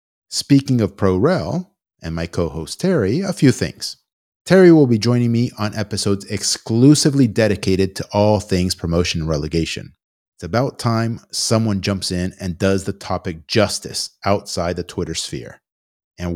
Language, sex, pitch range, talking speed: English, male, 90-120 Hz, 150 wpm